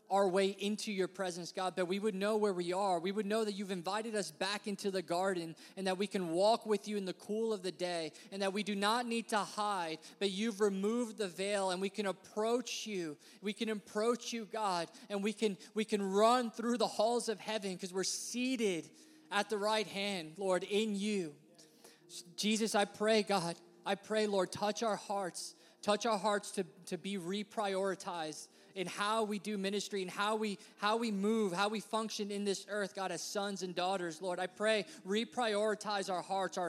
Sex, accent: male, American